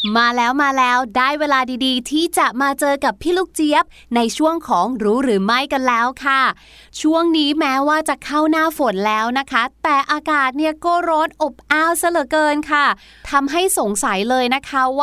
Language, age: Thai, 20-39